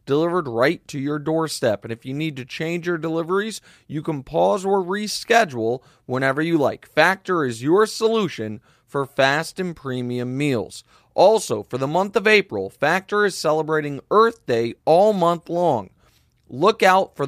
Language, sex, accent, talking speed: English, male, American, 165 wpm